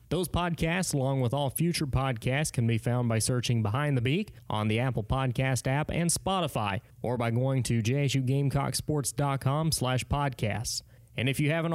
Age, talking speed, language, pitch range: 20-39, 165 wpm, English, 125-155 Hz